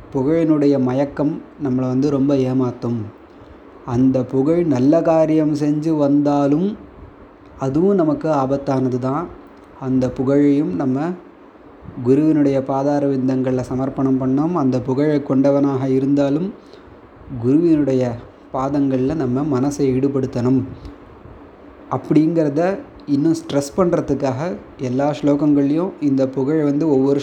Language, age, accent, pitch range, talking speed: Tamil, 20-39, native, 130-150 Hz, 95 wpm